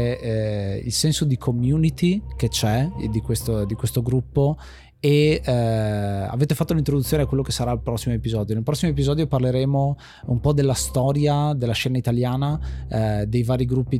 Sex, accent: male, native